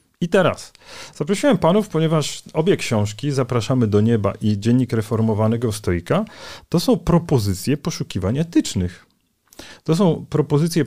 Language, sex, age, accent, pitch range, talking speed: Polish, male, 40-59, native, 115-155 Hz, 120 wpm